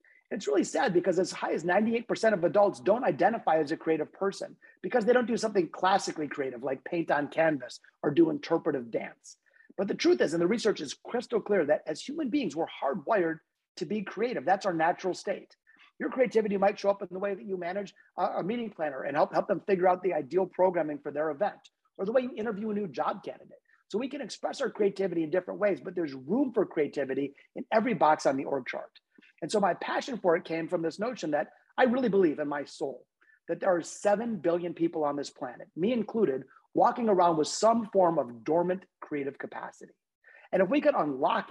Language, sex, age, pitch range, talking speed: English, male, 30-49, 165-220 Hz, 220 wpm